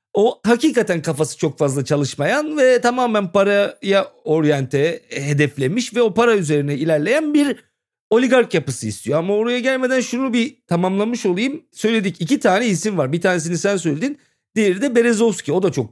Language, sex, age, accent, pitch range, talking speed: Turkish, male, 40-59, native, 150-210 Hz, 160 wpm